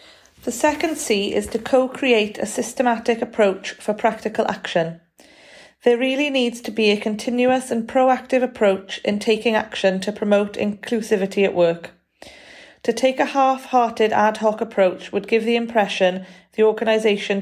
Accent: British